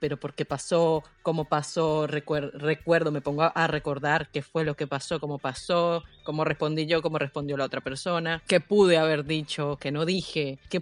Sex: female